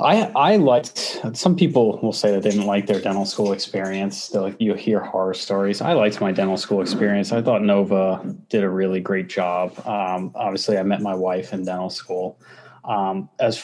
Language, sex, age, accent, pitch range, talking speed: English, male, 20-39, American, 100-125 Hz, 200 wpm